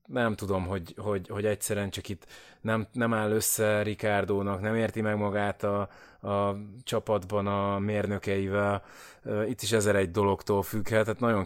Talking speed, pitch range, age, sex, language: 150 wpm, 95-110 Hz, 20-39, male, Hungarian